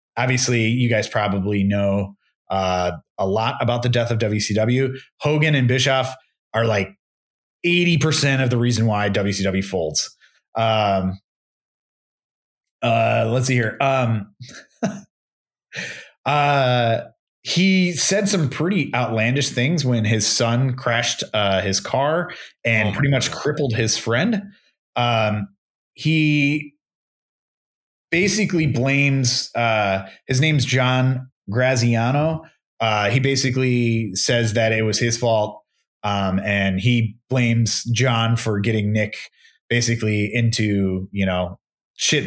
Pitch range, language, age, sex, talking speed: 110-140 Hz, English, 30-49, male, 115 wpm